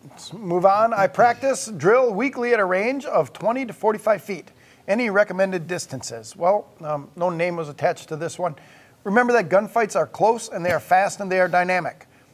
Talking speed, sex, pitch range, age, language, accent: 195 wpm, male, 160-200 Hz, 40-59, English, American